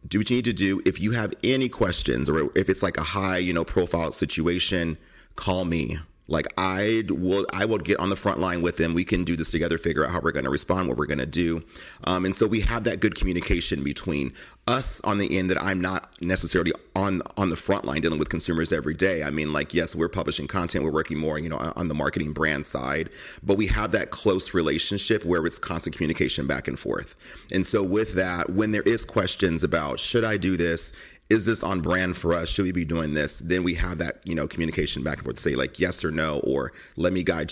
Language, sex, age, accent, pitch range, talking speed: English, male, 30-49, American, 80-95 Hz, 250 wpm